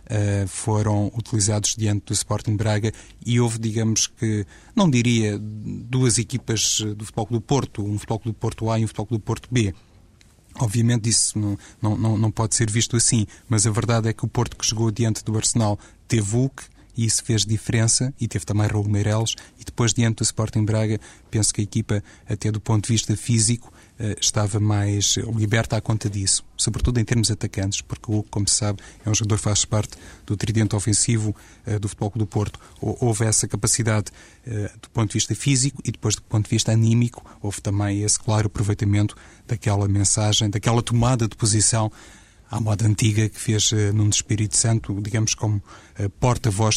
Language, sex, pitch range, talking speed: Portuguese, male, 105-115 Hz, 180 wpm